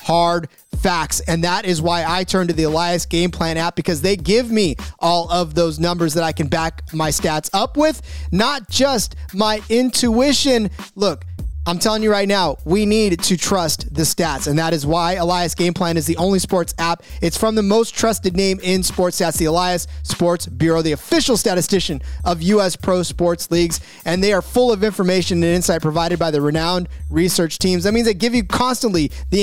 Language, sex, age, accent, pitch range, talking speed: English, male, 30-49, American, 165-210 Hz, 205 wpm